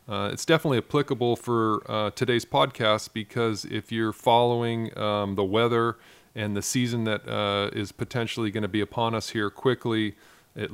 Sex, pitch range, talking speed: male, 100-120 Hz, 170 wpm